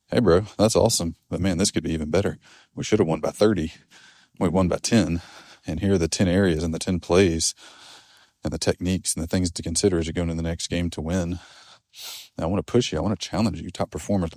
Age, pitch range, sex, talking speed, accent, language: 30-49, 80-95 Hz, male, 255 wpm, American, English